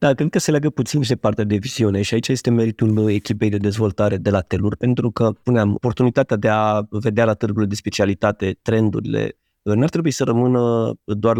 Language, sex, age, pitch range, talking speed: Romanian, male, 20-39, 105-120 Hz, 200 wpm